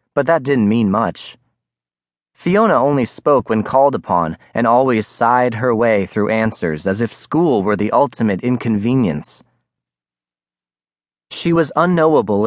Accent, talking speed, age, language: American, 135 wpm, 30-49, English